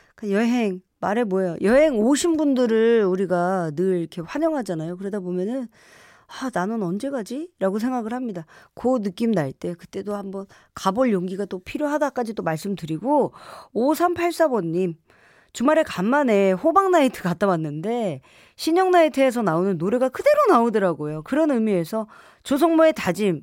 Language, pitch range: Korean, 190-295 Hz